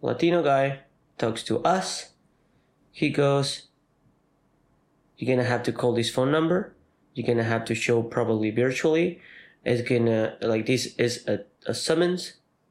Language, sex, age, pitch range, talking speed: English, male, 20-39, 115-140 Hz, 140 wpm